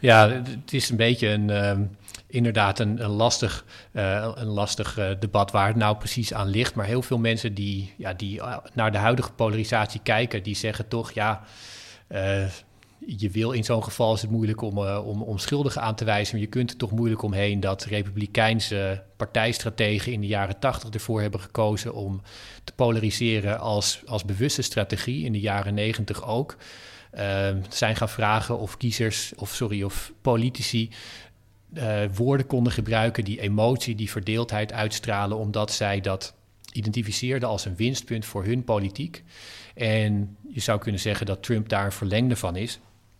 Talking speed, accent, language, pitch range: 165 wpm, Dutch, Dutch, 100-115 Hz